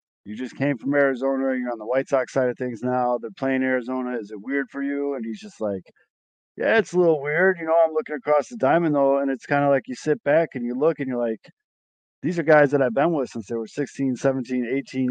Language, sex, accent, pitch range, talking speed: English, male, American, 110-135 Hz, 265 wpm